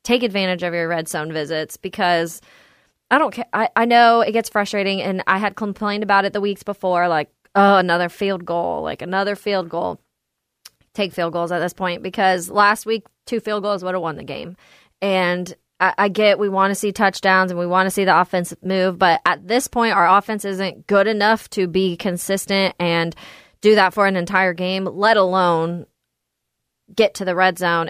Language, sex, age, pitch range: English, female, 20-39, 175-205 Hz